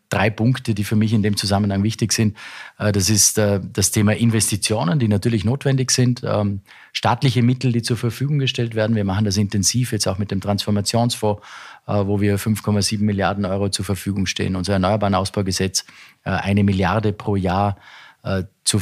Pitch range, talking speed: 100-120 Hz, 165 wpm